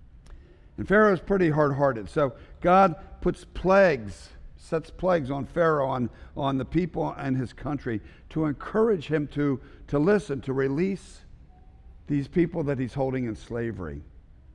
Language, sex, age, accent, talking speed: English, male, 60-79, American, 140 wpm